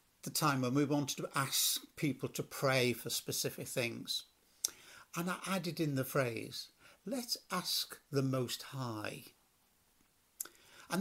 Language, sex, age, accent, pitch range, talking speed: English, male, 60-79, British, 125-180 Hz, 135 wpm